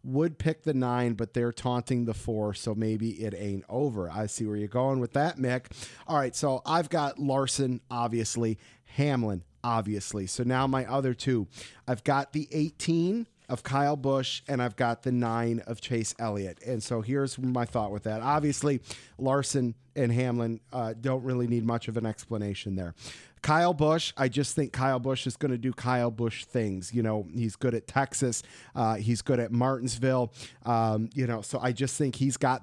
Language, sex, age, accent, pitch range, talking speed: English, male, 40-59, American, 115-140 Hz, 195 wpm